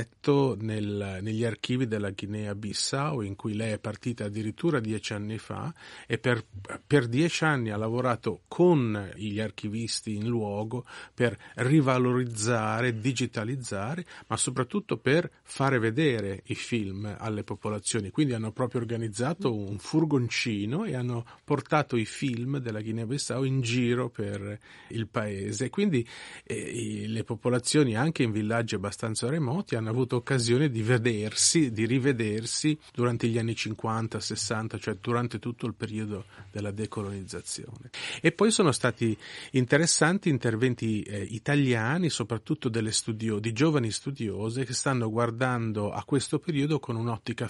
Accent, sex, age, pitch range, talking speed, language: native, male, 40-59, 110-135 Hz, 135 wpm, Italian